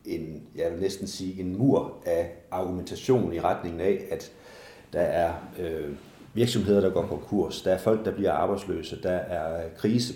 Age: 30-49